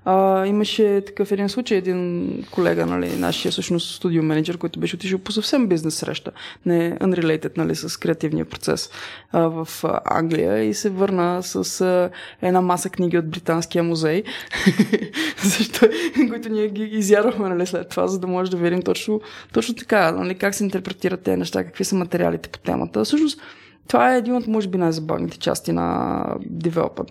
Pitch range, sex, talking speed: 165-210 Hz, female, 165 wpm